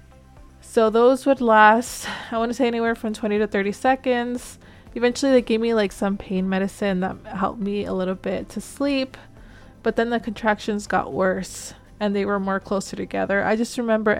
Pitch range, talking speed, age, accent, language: 195-225 Hz, 190 wpm, 20-39, American, English